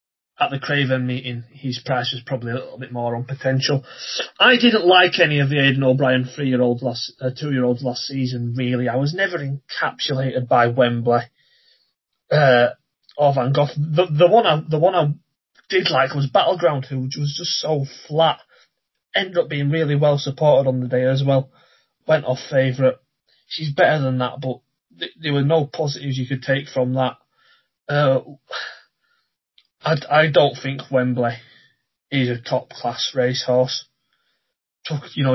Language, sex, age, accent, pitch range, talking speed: English, male, 30-49, British, 125-145 Hz, 160 wpm